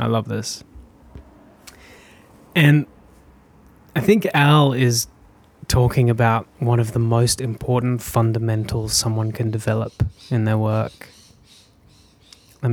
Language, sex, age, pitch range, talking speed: English, male, 20-39, 105-125 Hz, 110 wpm